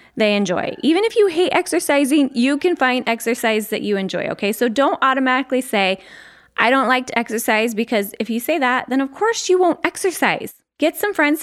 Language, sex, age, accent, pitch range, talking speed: English, female, 20-39, American, 215-295 Hz, 200 wpm